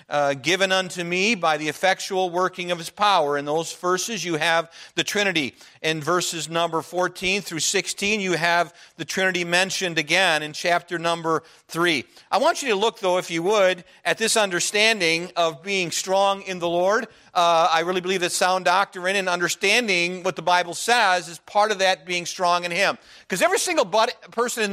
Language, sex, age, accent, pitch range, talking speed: English, male, 40-59, American, 175-215 Hz, 190 wpm